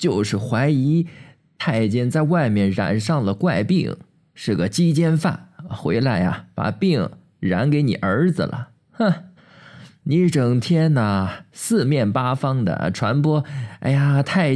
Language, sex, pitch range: Chinese, male, 130-175 Hz